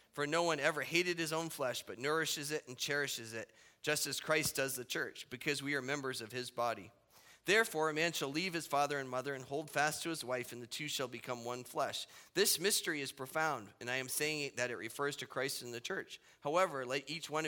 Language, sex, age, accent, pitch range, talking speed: English, male, 30-49, American, 130-165 Hz, 235 wpm